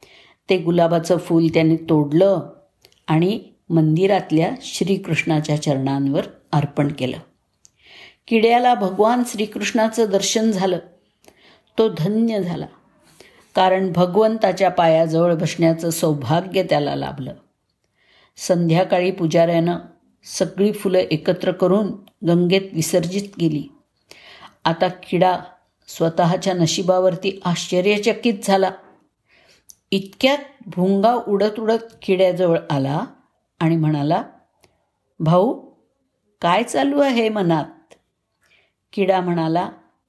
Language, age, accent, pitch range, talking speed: Marathi, 50-69, native, 165-210 Hz, 85 wpm